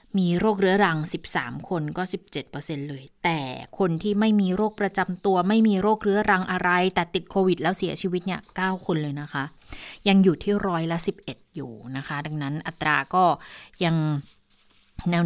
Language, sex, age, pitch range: Thai, female, 20-39, 165-210 Hz